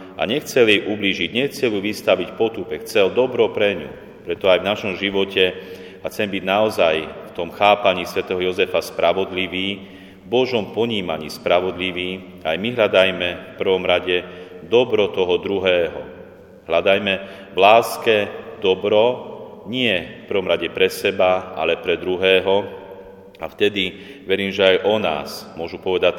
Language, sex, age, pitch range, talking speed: Slovak, male, 40-59, 90-110 Hz, 140 wpm